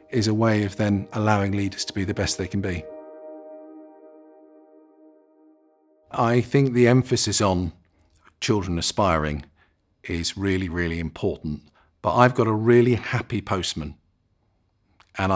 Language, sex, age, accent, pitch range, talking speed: English, male, 40-59, British, 95-120 Hz, 130 wpm